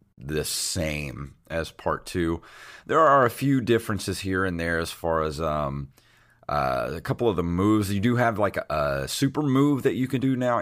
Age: 30-49